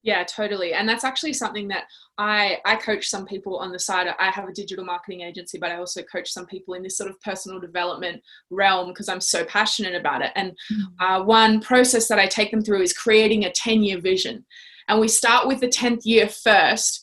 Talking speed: 220 wpm